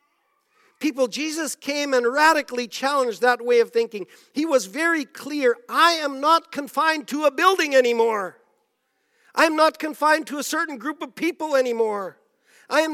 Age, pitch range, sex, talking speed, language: 50-69, 205-315 Hz, male, 160 wpm, English